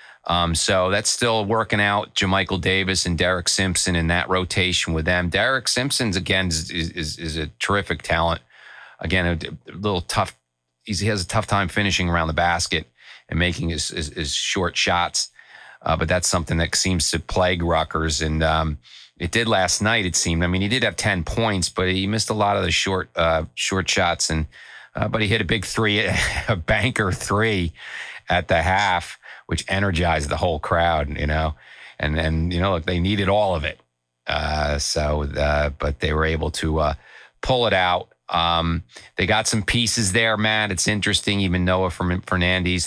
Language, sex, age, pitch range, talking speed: English, male, 40-59, 80-100 Hz, 195 wpm